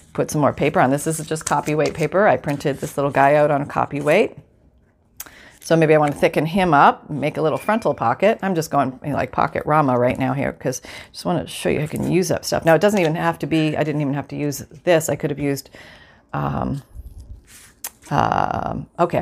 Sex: female